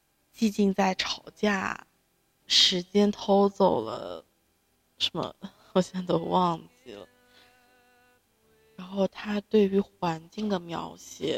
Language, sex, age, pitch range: Chinese, female, 20-39, 160-210 Hz